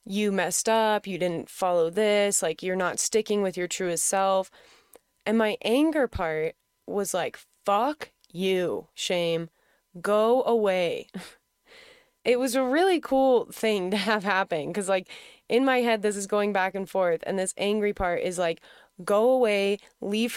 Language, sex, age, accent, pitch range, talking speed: English, female, 20-39, American, 175-225 Hz, 160 wpm